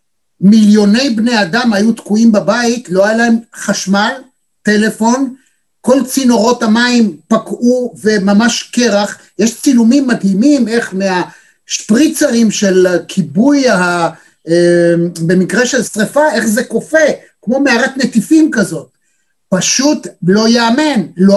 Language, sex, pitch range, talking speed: Hebrew, male, 190-250 Hz, 105 wpm